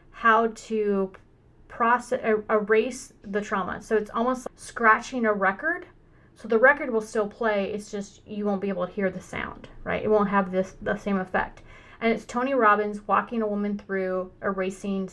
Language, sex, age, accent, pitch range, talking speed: English, female, 30-49, American, 195-225 Hz, 185 wpm